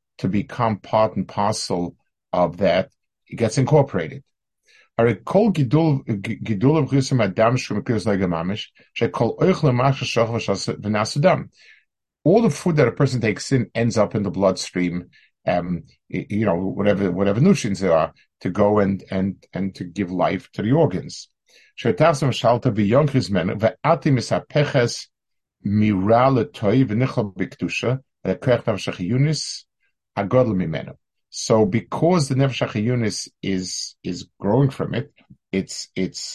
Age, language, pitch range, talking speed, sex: 50-69, English, 95-130 Hz, 90 wpm, male